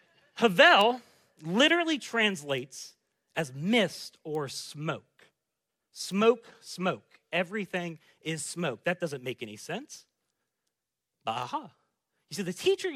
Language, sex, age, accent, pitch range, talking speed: English, male, 40-59, American, 155-225 Hz, 105 wpm